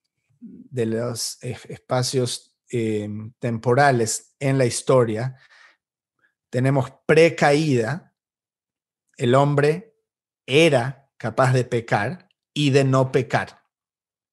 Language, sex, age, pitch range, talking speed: English, male, 40-59, 125-155 Hz, 85 wpm